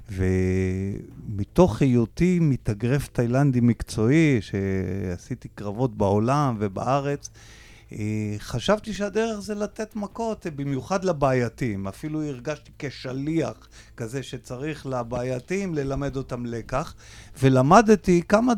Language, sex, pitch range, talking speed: Hebrew, male, 120-165 Hz, 85 wpm